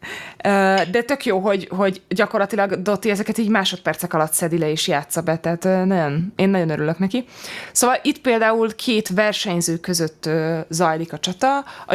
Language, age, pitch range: Hungarian, 20-39, 165-215 Hz